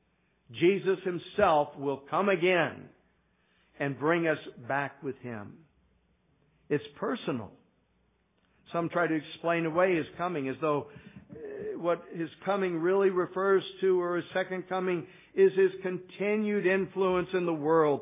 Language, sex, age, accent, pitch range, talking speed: English, male, 60-79, American, 145-185 Hz, 130 wpm